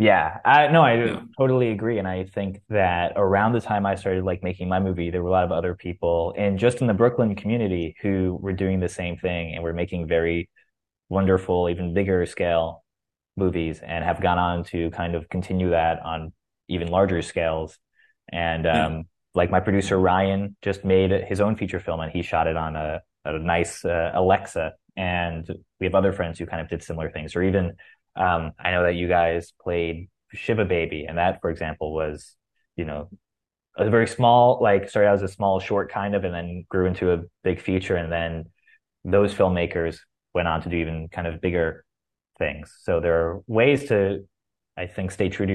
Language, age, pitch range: English, 20-39, 85-100 Hz